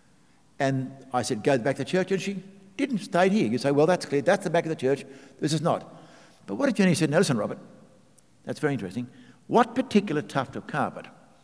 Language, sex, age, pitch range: English, male, 60-79, 125-180 Hz